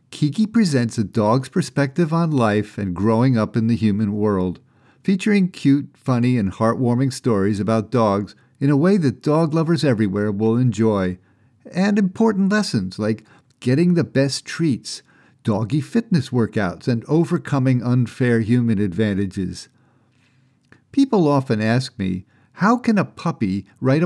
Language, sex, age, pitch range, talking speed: English, male, 50-69, 110-145 Hz, 140 wpm